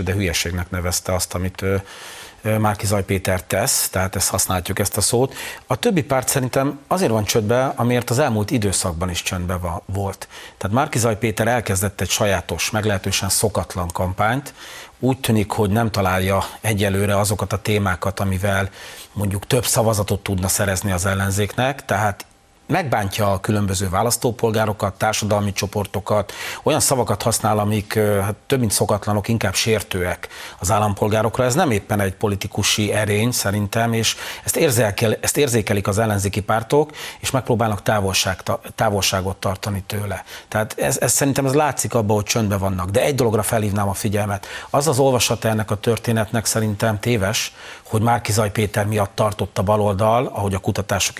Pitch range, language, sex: 100-115 Hz, Hungarian, male